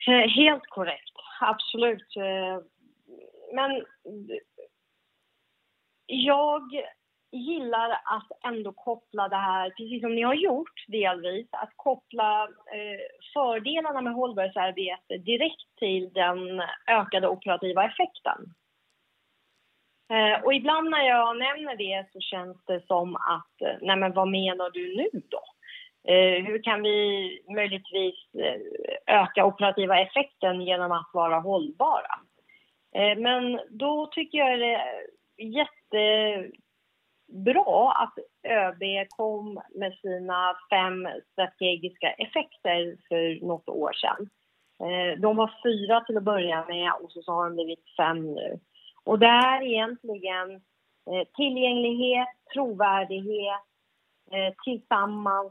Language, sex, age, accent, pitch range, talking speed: Swedish, female, 30-49, native, 185-255 Hz, 110 wpm